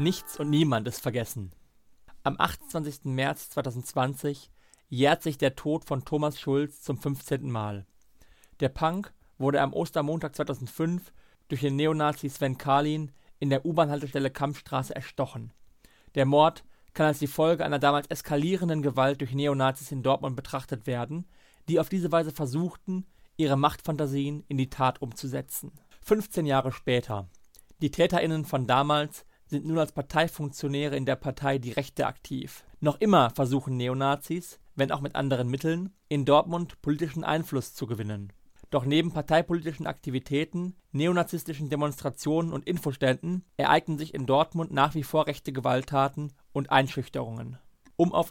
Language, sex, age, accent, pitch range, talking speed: German, male, 40-59, German, 135-160 Hz, 145 wpm